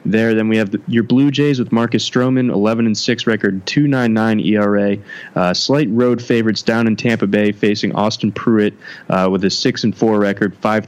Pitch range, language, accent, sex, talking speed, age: 100-120 Hz, English, American, male, 200 wpm, 20-39